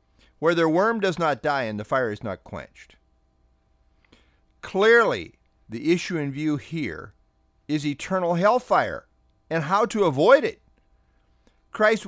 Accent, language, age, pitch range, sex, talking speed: American, English, 50-69, 110-170 Hz, male, 135 wpm